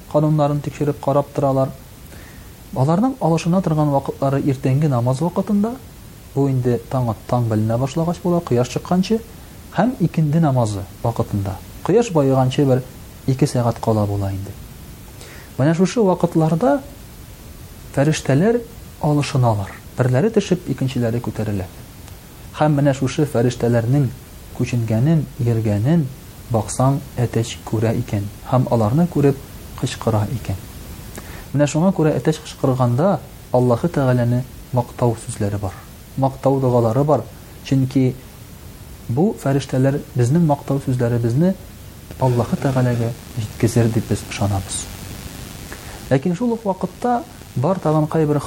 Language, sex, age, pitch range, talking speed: Russian, male, 40-59, 115-150 Hz, 85 wpm